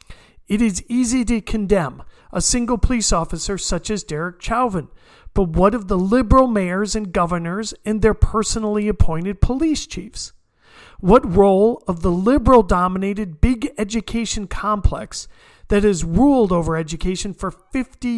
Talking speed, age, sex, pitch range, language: 140 wpm, 50-69, male, 190-245 Hz, English